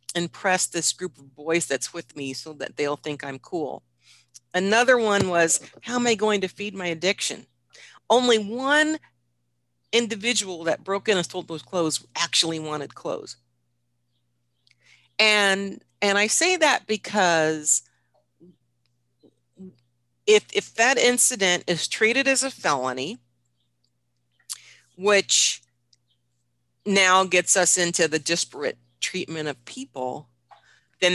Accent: American